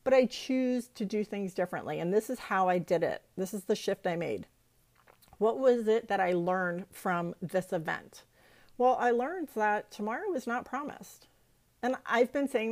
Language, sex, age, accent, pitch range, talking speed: English, female, 40-59, American, 190-235 Hz, 195 wpm